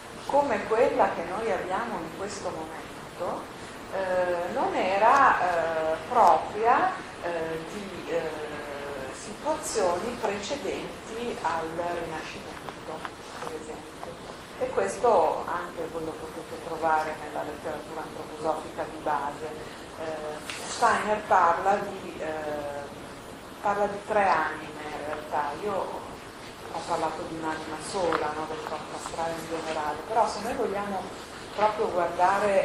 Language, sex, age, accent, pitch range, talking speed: Italian, female, 40-59, native, 155-190 Hz, 115 wpm